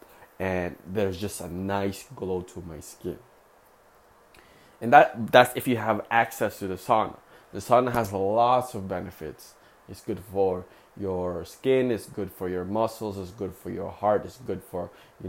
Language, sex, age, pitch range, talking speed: English, male, 20-39, 95-115 Hz, 175 wpm